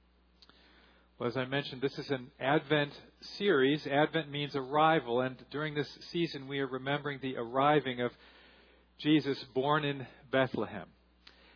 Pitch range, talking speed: 140-165 Hz, 135 wpm